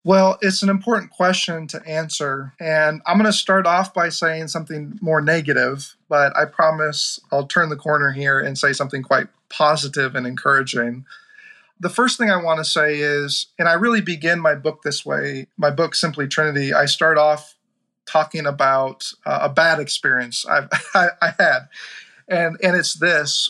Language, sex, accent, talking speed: English, male, American, 175 wpm